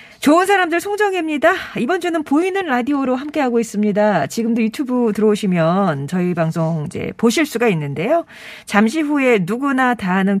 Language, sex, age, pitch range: Korean, female, 40-59, 185-295 Hz